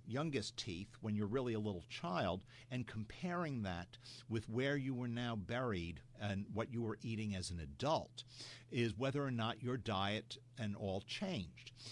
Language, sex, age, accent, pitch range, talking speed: English, male, 50-69, American, 105-125 Hz, 170 wpm